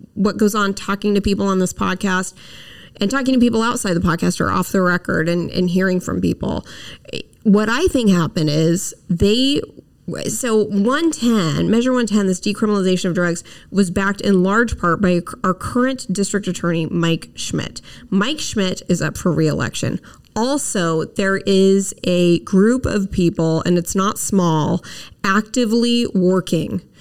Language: English